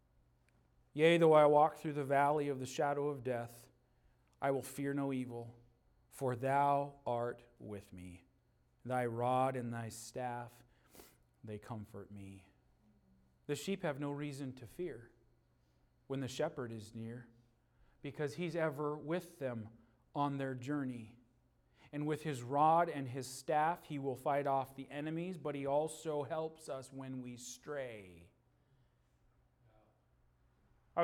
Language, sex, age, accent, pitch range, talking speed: English, male, 40-59, American, 110-145 Hz, 140 wpm